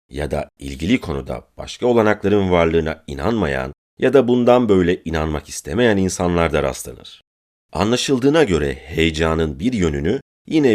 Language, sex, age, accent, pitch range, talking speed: Turkish, male, 40-59, native, 75-105 Hz, 130 wpm